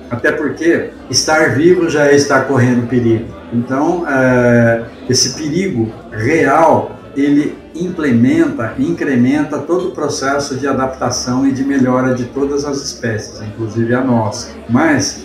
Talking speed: 125 wpm